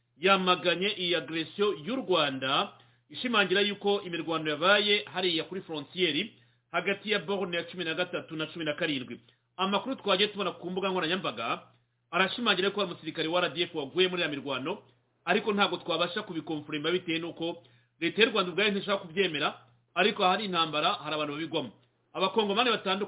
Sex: male